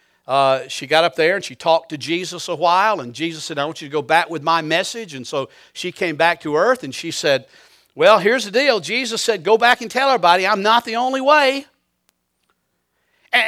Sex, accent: male, American